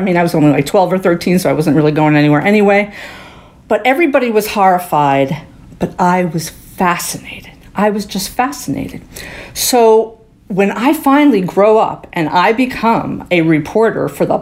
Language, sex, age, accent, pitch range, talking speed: English, female, 50-69, American, 165-225 Hz, 170 wpm